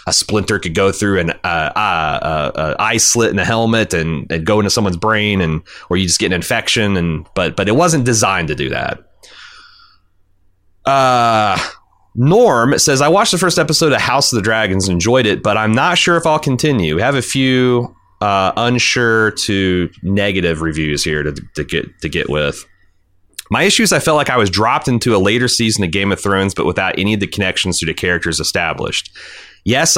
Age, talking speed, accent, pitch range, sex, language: 30-49, 210 wpm, American, 95-125 Hz, male, English